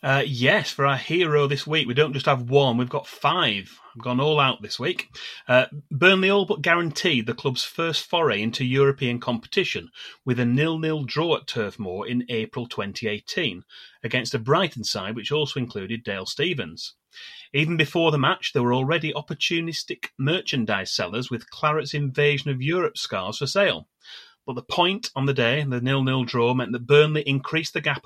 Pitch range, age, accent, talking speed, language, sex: 125-155 Hz, 30-49, British, 185 wpm, English, male